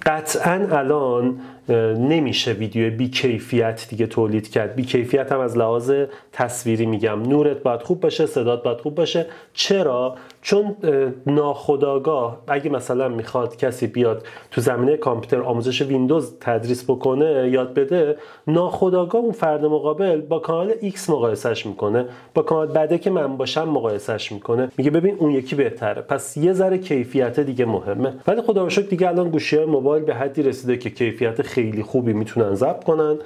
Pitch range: 125-155 Hz